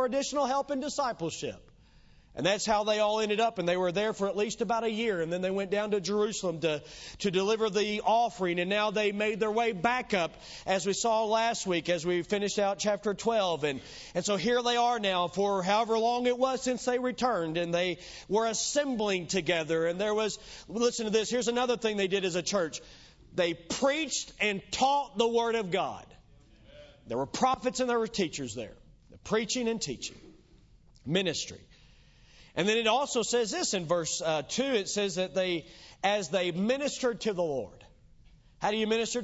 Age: 40-59